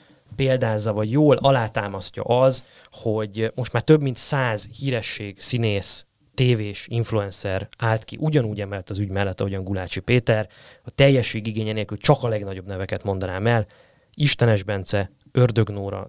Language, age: Hungarian, 20-39